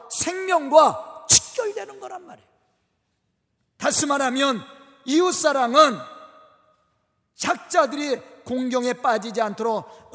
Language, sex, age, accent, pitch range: Korean, male, 40-59, native, 240-315 Hz